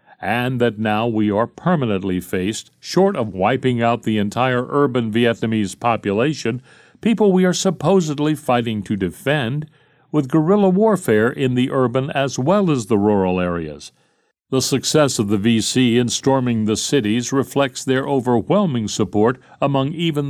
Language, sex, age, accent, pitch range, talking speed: English, male, 60-79, American, 110-145 Hz, 150 wpm